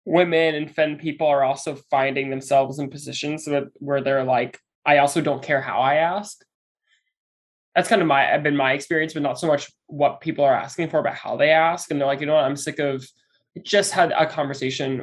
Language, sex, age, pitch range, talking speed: English, male, 20-39, 135-155 Hz, 215 wpm